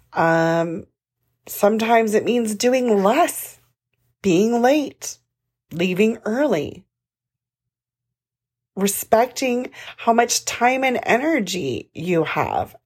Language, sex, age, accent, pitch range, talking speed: English, female, 30-49, American, 155-250 Hz, 85 wpm